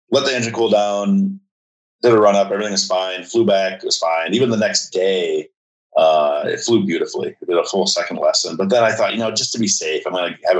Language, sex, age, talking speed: English, male, 30-49, 255 wpm